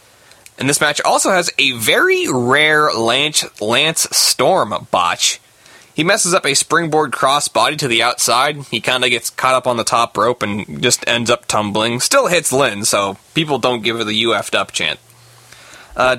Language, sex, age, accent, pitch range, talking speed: English, male, 20-39, American, 120-170 Hz, 180 wpm